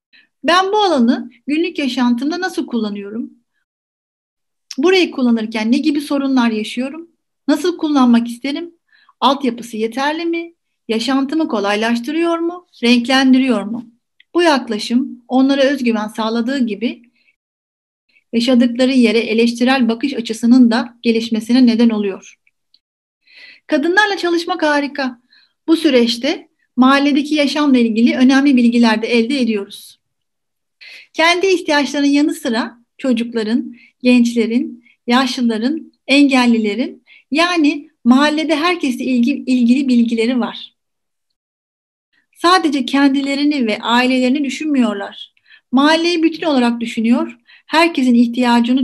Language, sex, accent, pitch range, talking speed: Turkish, female, native, 235-300 Hz, 95 wpm